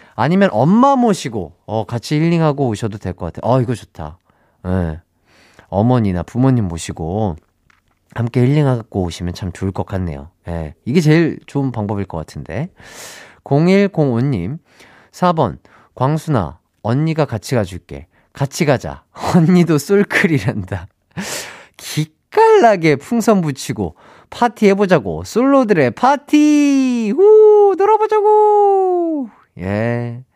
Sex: male